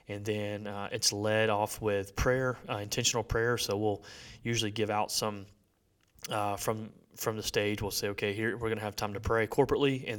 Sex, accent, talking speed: male, American, 205 wpm